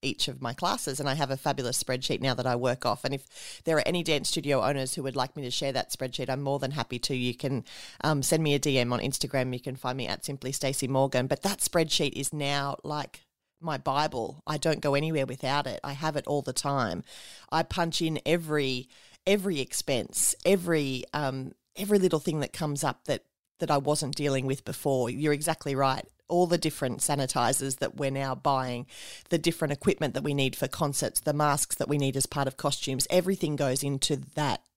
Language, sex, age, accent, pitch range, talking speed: English, female, 30-49, Australian, 135-160 Hz, 215 wpm